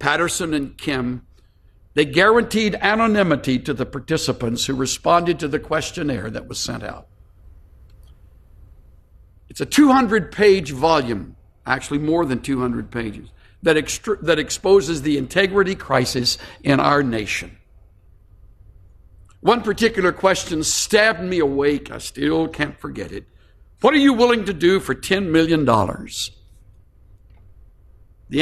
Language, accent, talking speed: English, American, 120 wpm